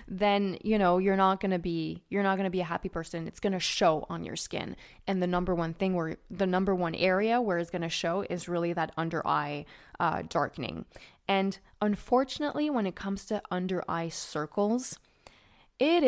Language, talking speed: English, 190 wpm